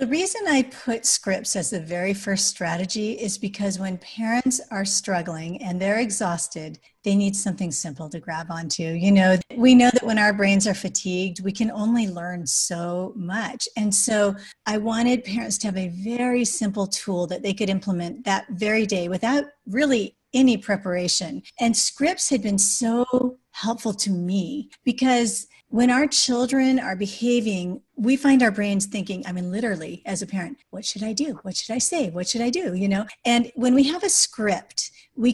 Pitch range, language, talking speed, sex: 190-250 Hz, English, 185 wpm, female